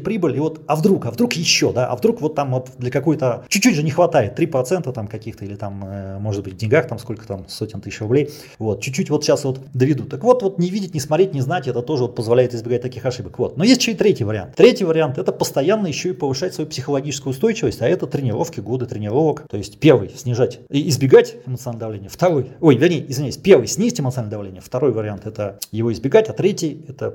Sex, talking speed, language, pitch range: male, 230 wpm, Russian, 120-155 Hz